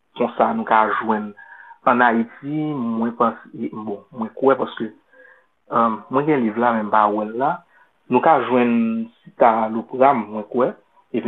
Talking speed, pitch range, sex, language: 110 wpm, 115-140 Hz, male, French